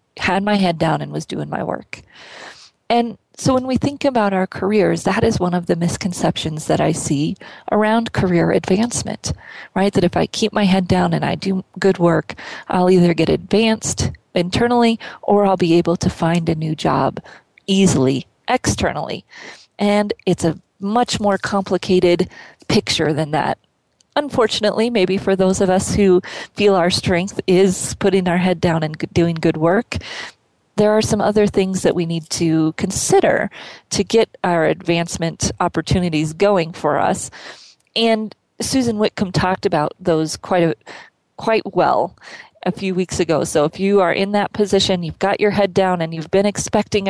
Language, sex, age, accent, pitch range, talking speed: English, female, 30-49, American, 170-205 Hz, 170 wpm